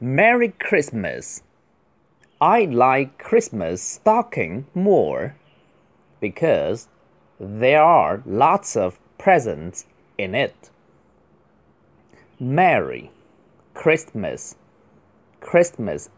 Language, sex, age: Chinese, male, 30-49